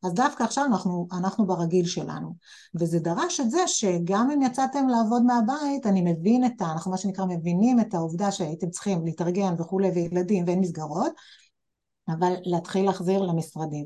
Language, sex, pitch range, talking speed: Hebrew, female, 170-210 Hz, 160 wpm